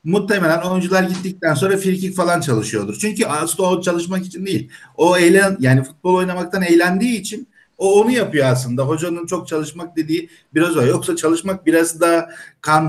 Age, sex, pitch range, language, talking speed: 50-69, male, 140-175 Hz, English, 165 wpm